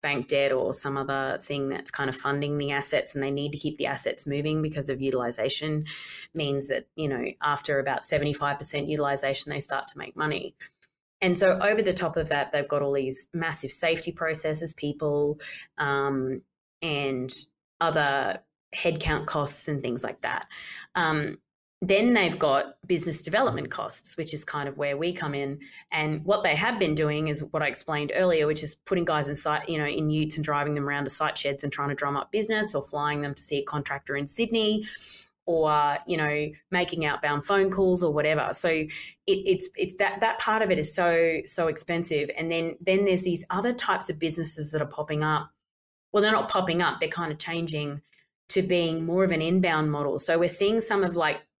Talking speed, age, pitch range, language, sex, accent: 205 wpm, 20-39, 145-170 Hz, English, female, Australian